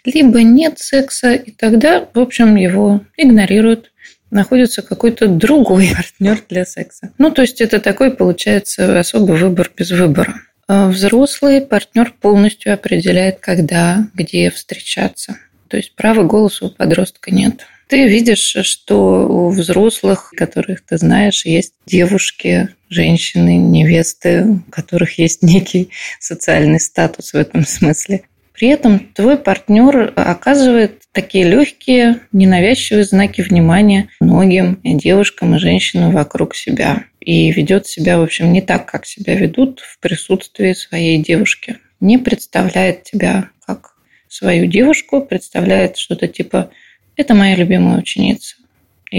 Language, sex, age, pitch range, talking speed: Russian, female, 20-39, 180-230 Hz, 130 wpm